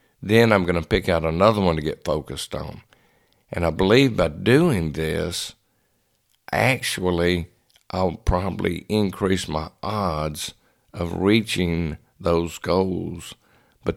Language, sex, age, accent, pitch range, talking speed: English, male, 60-79, American, 85-110 Hz, 125 wpm